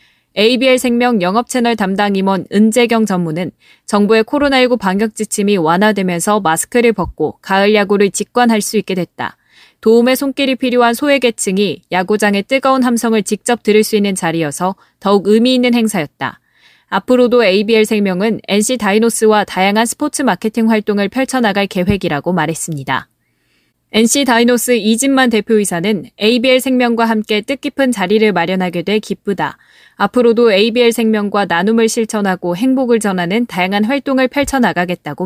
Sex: female